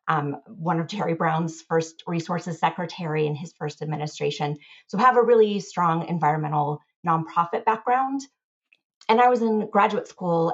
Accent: American